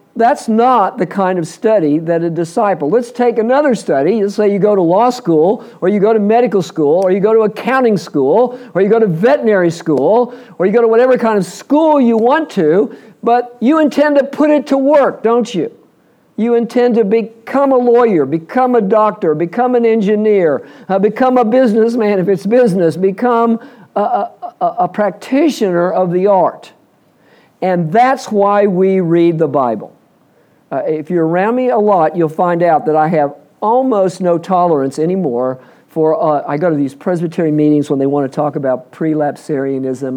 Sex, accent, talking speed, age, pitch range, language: male, American, 185 wpm, 50-69, 170-235 Hz, English